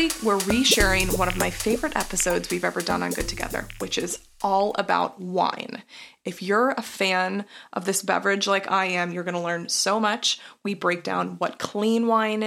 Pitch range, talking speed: 195-245 Hz, 195 wpm